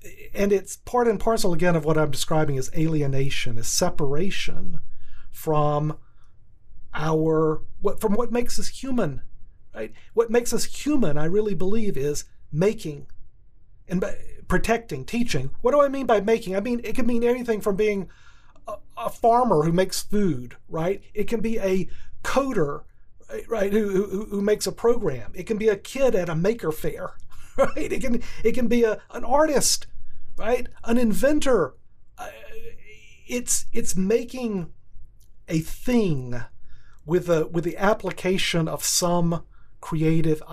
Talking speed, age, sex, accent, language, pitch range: 150 wpm, 40-59, male, American, English, 135-210 Hz